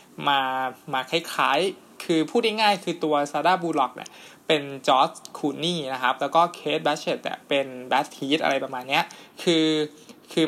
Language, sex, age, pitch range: Thai, male, 20-39, 140-170 Hz